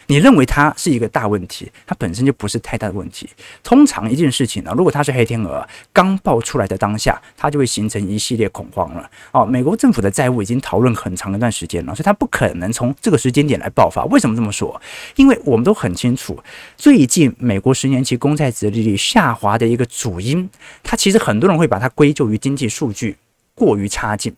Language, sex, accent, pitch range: Chinese, male, native, 110-150 Hz